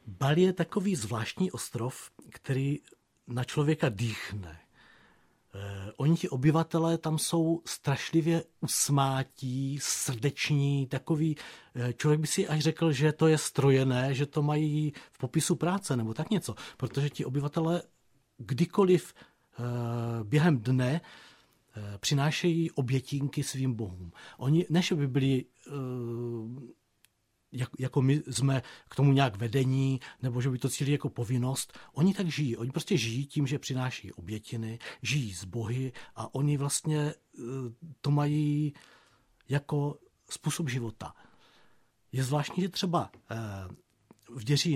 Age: 40-59